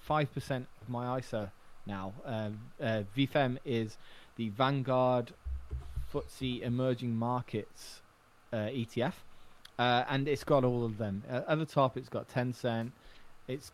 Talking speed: 130 wpm